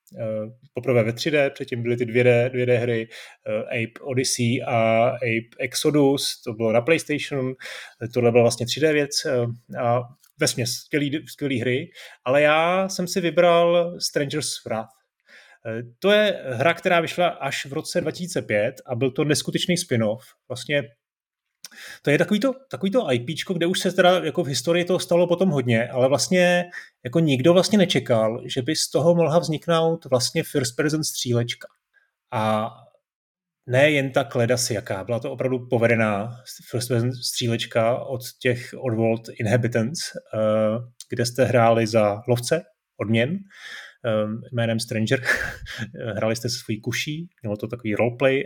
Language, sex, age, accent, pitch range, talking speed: Czech, male, 30-49, native, 115-155 Hz, 145 wpm